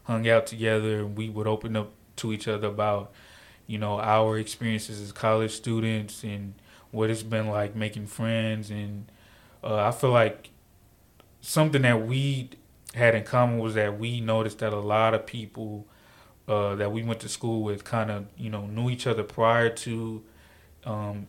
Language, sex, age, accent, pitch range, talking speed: English, male, 20-39, American, 105-115 Hz, 180 wpm